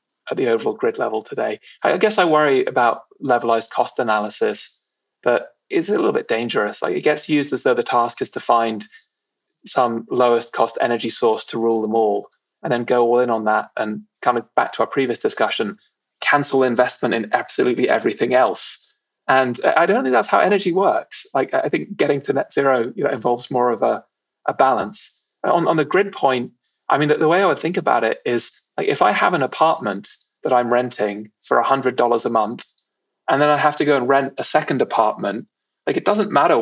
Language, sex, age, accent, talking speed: English, male, 20-39, British, 205 wpm